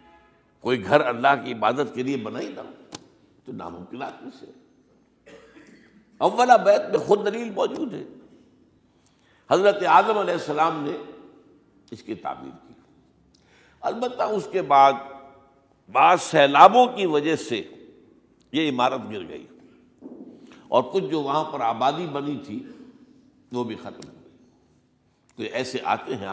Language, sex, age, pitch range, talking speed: Urdu, male, 60-79, 135-225 Hz, 130 wpm